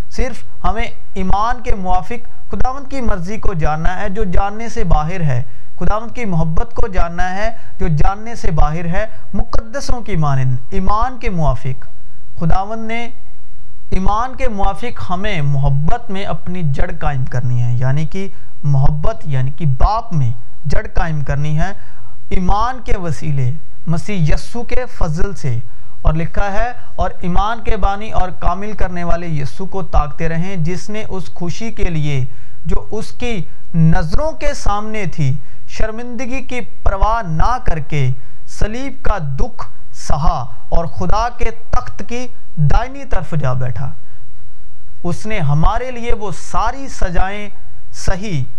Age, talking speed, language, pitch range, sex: 50-69, 150 wpm, Urdu, 135-215 Hz, male